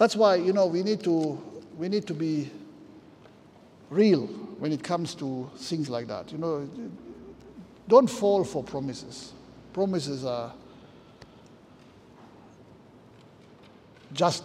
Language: English